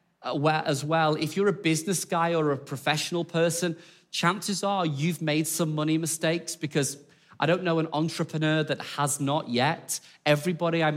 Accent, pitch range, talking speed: British, 135-165 Hz, 165 wpm